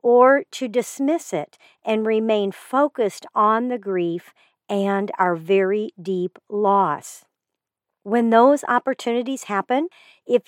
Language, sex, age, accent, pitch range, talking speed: English, female, 50-69, American, 190-245 Hz, 115 wpm